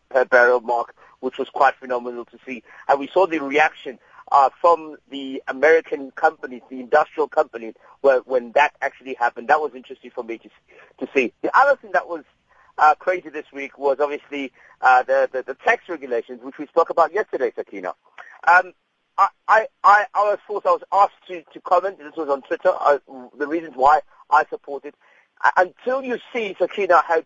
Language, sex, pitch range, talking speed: English, male, 135-185 Hz, 190 wpm